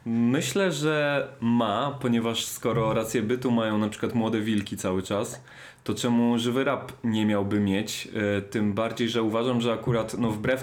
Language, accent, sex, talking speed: Polish, native, male, 165 wpm